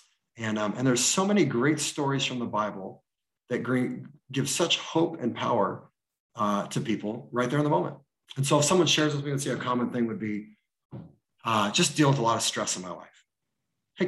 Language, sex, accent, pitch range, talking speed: English, male, American, 120-155 Hz, 220 wpm